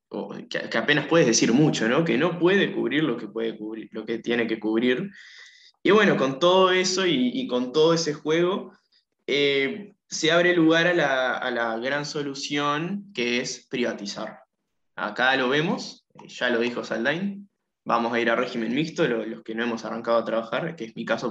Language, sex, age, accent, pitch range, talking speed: Spanish, male, 20-39, Argentinian, 115-165 Hz, 175 wpm